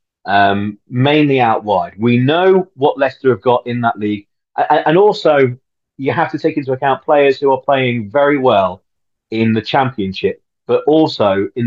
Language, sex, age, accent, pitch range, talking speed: English, male, 40-59, British, 110-160 Hz, 175 wpm